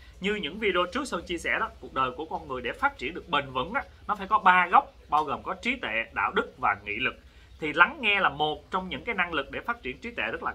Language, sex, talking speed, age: Vietnamese, male, 295 wpm, 20-39